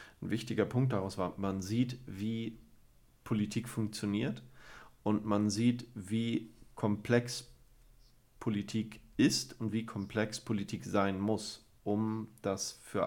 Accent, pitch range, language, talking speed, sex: German, 105-120 Hz, German, 120 wpm, male